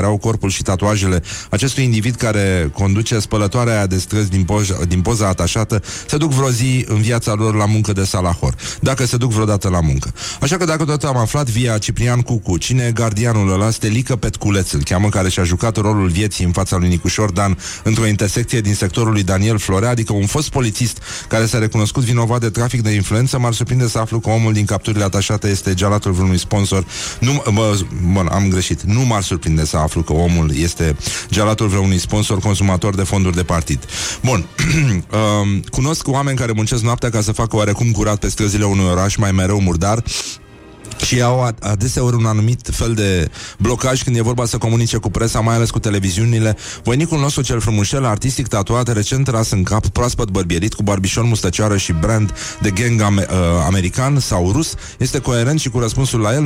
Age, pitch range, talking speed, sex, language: 30-49, 95-120 Hz, 185 wpm, male, Romanian